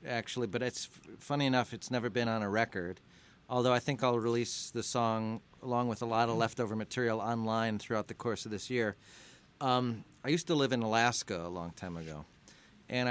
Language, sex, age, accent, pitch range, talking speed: English, male, 40-59, American, 105-125 Hz, 200 wpm